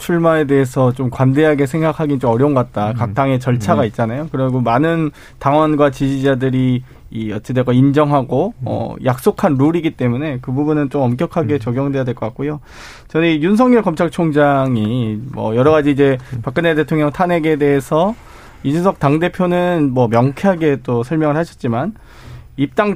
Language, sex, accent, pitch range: Korean, male, native, 130-165 Hz